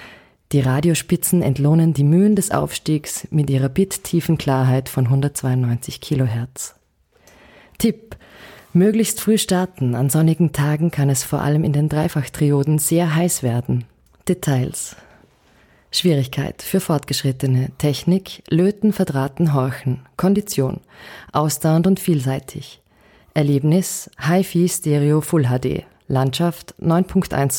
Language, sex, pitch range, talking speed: German, female, 135-180 Hz, 110 wpm